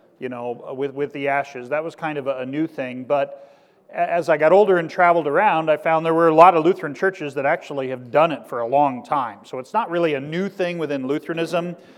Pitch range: 135-160 Hz